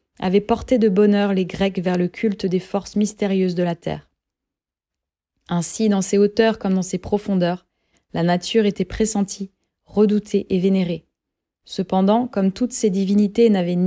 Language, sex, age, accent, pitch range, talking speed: French, female, 20-39, French, 190-215 Hz, 155 wpm